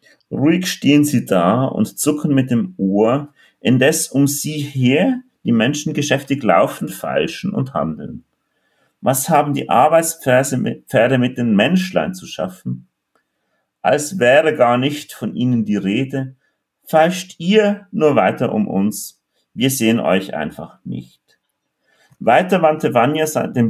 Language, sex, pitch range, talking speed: German, male, 115-165 Hz, 130 wpm